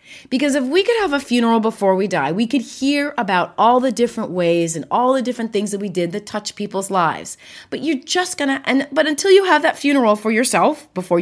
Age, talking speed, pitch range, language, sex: 30-49, 235 wpm, 180-270 Hz, English, female